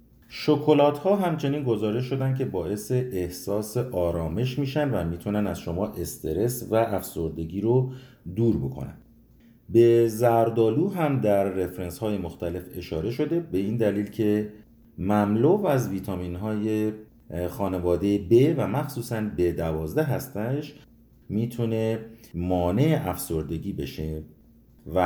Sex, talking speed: male, 115 wpm